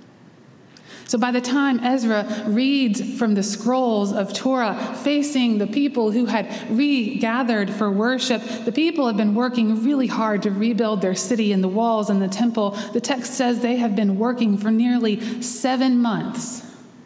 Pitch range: 195-240 Hz